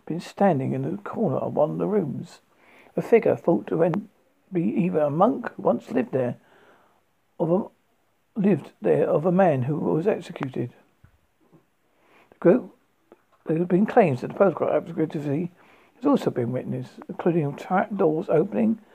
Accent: British